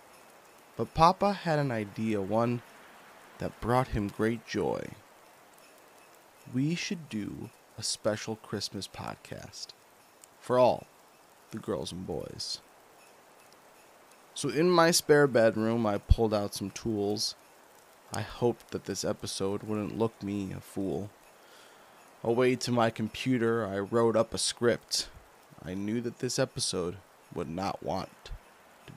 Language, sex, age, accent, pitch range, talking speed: English, male, 20-39, American, 105-135 Hz, 130 wpm